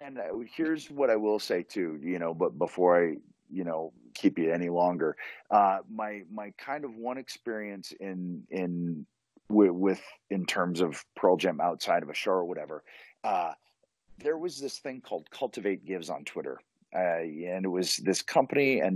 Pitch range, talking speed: 90-110 Hz, 175 wpm